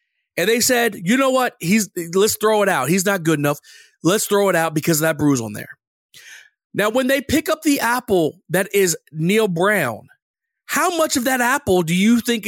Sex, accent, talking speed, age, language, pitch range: male, American, 210 wpm, 40-59, English, 185-260 Hz